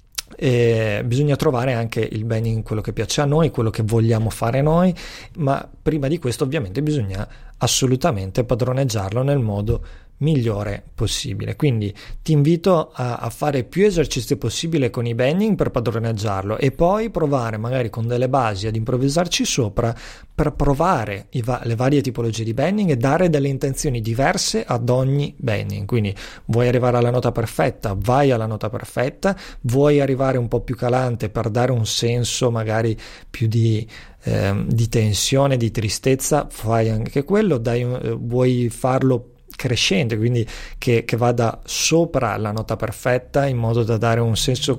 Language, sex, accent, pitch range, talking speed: Italian, male, native, 115-140 Hz, 160 wpm